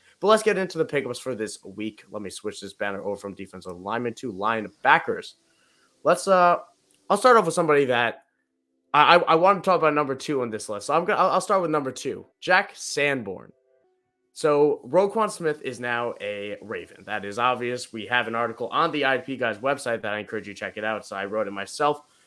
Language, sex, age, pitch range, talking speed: English, male, 20-39, 110-150 Hz, 220 wpm